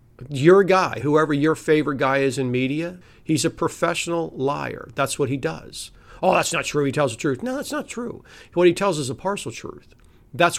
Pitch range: 125-165 Hz